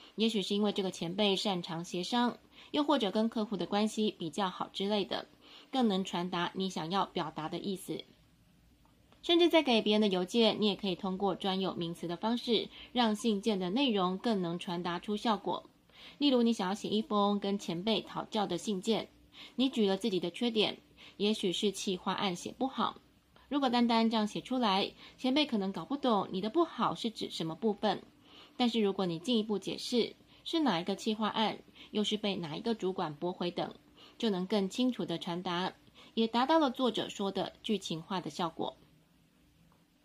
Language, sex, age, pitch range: Chinese, female, 20-39, 180-225 Hz